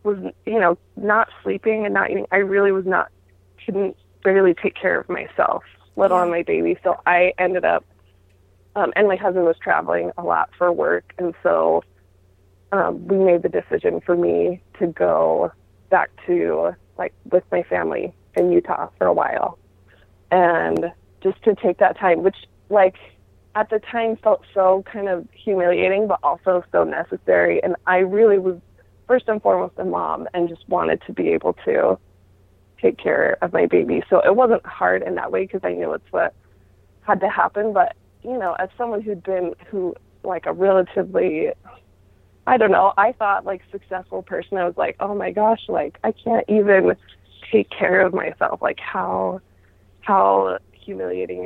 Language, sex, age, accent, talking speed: English, female, 20-39, American, 175 wpm